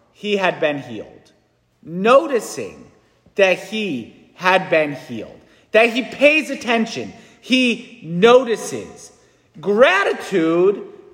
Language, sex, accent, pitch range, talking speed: English, male, American, 200-270 Hz, 90 wpm